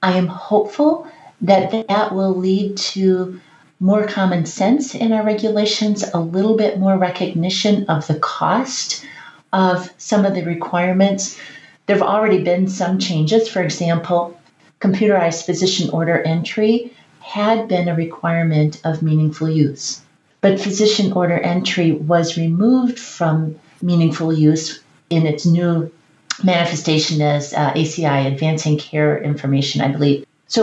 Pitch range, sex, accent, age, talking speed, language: 160-200 Hz, female, American, 40-59, 130 wpm, English